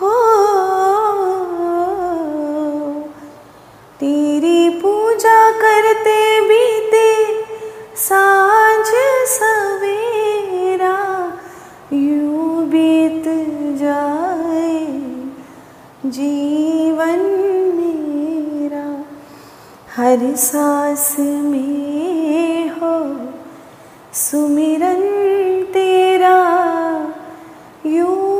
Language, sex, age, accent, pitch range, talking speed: Hindi, female, 20-39, native, 300-430 Hz, 40 wpm